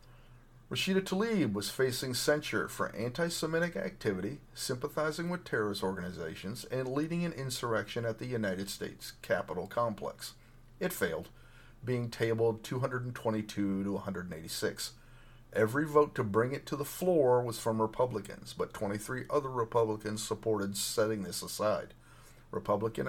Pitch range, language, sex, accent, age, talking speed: 105-125 Hz, English, male, American, 40-59, 125 wpm